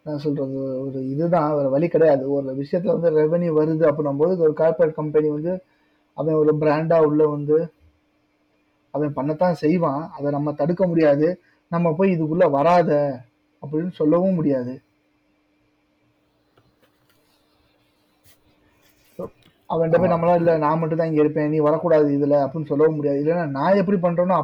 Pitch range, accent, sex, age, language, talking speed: 150-180 Hz, native, male, 30-49, Tamil, 135 wpm